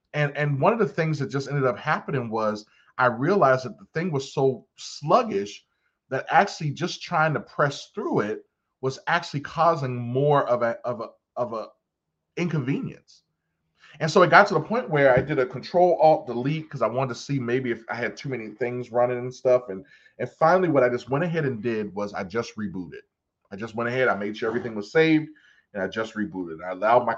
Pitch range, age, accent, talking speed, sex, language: 110-145 Hz, 20-39, American, 220 wpm, male, English